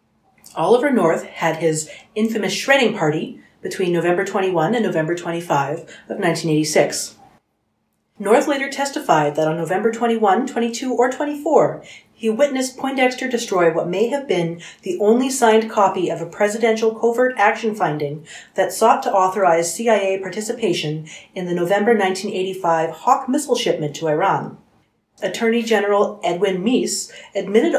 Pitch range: 160-230 Hz